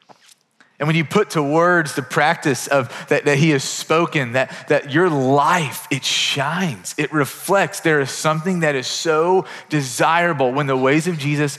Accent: American